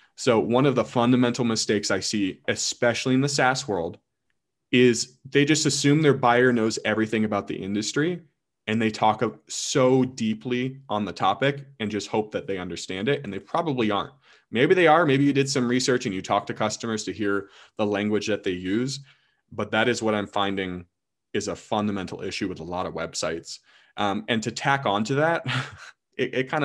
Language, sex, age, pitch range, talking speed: English, male, 20-39, 100-130 Hz, 200 wpm